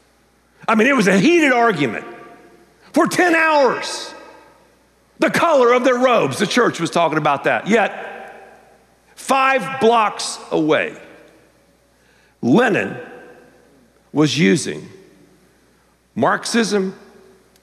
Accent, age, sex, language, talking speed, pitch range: American, 50-69, male, English, 100 wpm, 185-280 Hz